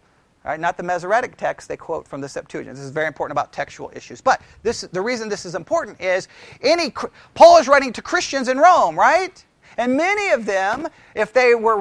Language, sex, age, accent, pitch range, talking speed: English, male, 40-59, American, 195-265 Hz, 210 wpm